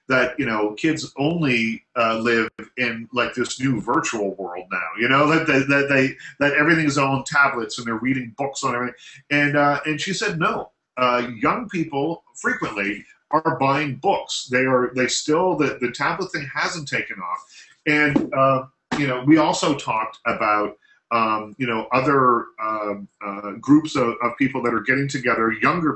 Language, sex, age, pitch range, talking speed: English, male, 40-59, 120-145 Hz, 185 wpm